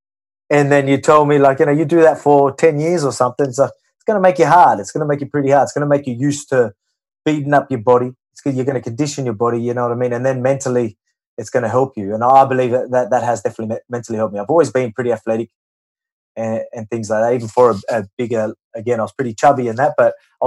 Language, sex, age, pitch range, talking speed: English, male, 20-39, 115-145 Hz, 280 wpm